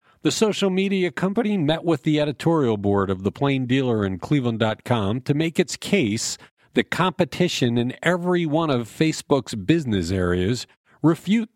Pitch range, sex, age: 105-160 Hz, male, 50-69